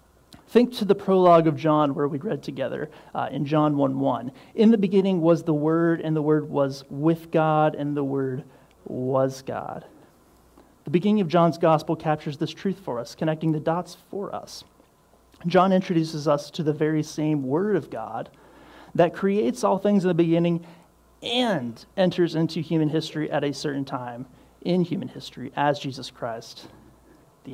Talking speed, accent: 175 wpm, American